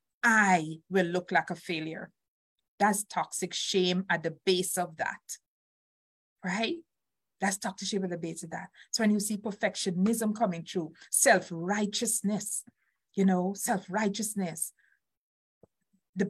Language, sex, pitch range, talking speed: English, female, 190-240 Hz, 130 wpm